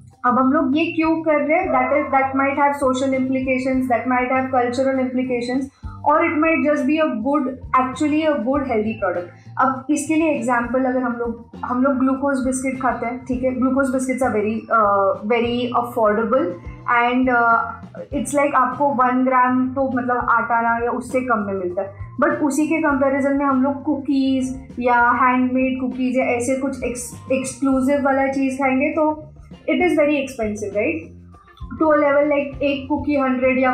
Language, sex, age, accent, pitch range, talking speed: Hindi, female, 20-39, native, 245-285 Hz, 180 wpm